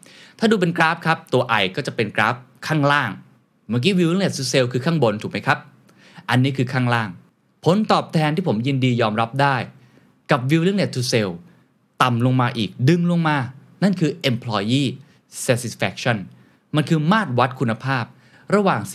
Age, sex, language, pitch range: 20-39, male, Thai, 115-160 Hz